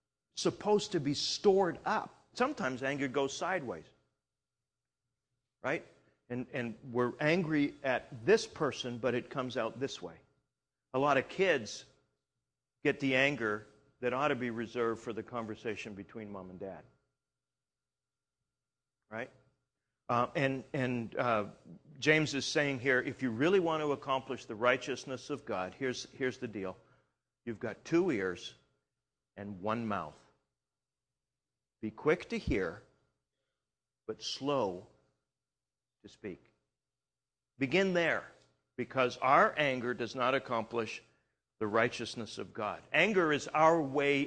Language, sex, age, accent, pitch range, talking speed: English, male, 50-69, American, 115-150 Hz, 130 wpm